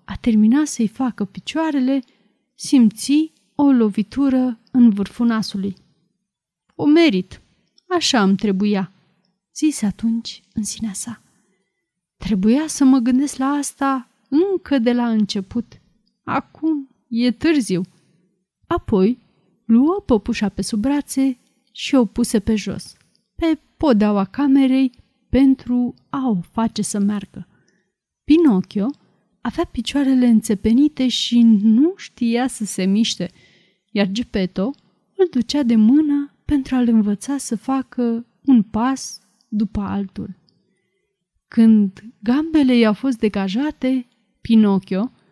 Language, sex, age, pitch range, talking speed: Romanian, female, 30-49, 205-265 Hz, 115 wpm